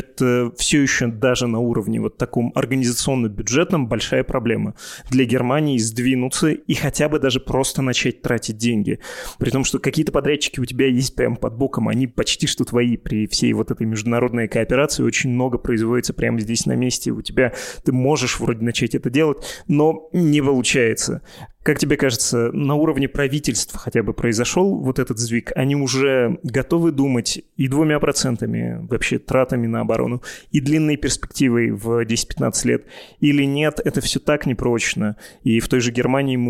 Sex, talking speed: male, 165 wpm